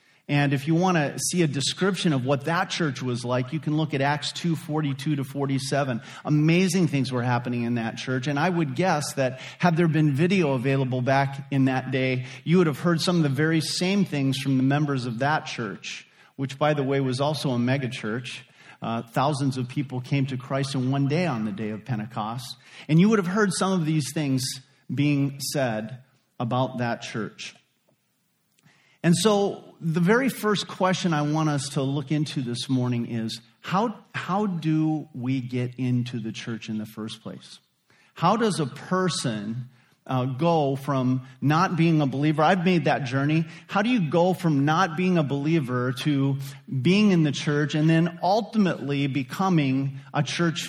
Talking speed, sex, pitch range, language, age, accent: 190 wpm, male, 130-170 Hz, English, 40-59, American